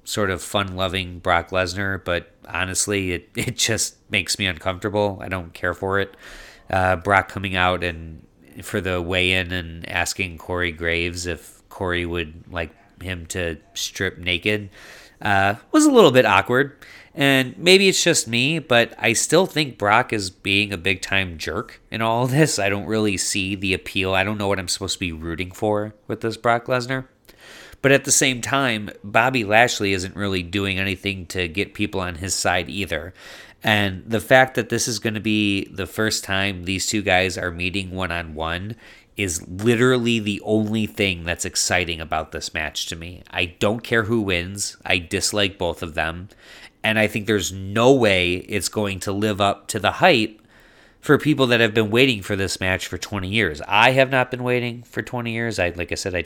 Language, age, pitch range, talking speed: English, 30-49, 90-115 Hz, 190 wpm